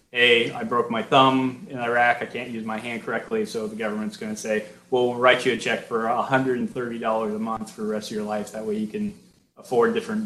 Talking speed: 240 wpm